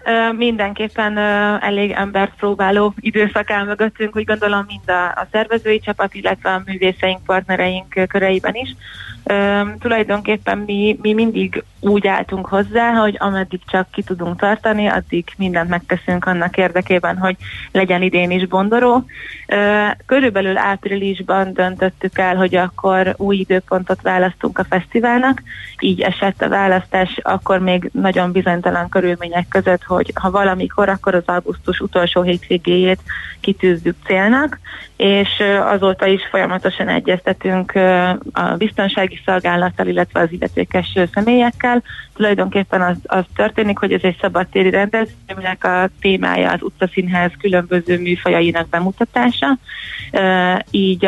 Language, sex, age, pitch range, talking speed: Hungarian, female, 30-49, 180-205 Hz, 125 wpm